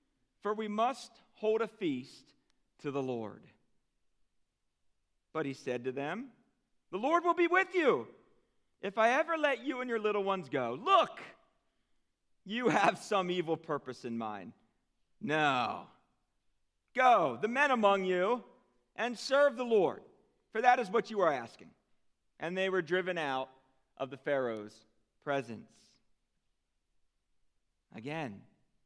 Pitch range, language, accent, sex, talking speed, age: 115-190 Hz, English, American, male, 135 wpm, 50-69